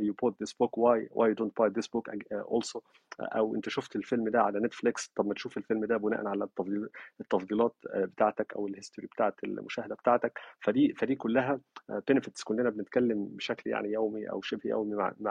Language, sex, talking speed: Arabic, male, 200 wpm